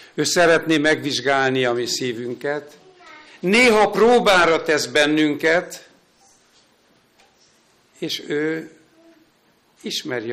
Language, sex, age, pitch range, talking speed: Hungarian, male, 60-79, 140-215 Hz, 75 wpm